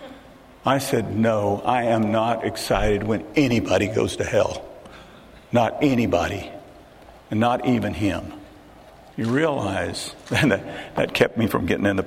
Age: 50-69